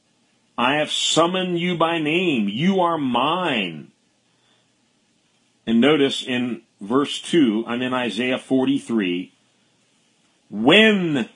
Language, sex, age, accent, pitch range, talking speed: English, male, 40-59, American, 110-170 Hz, 100 wpm